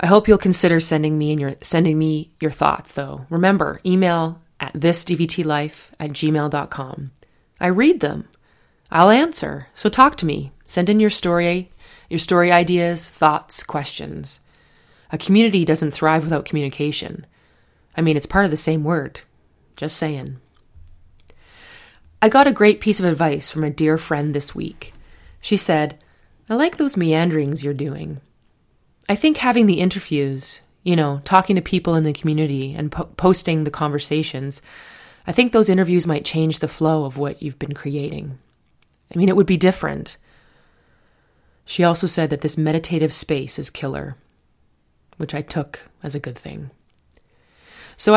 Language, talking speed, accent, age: English, 160 wpm, American, 30-49